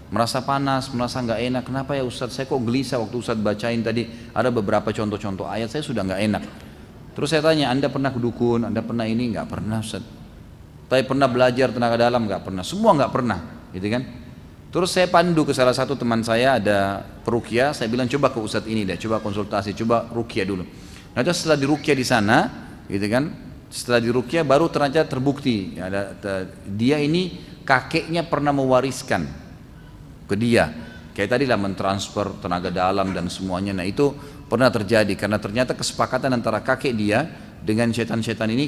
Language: Indonesian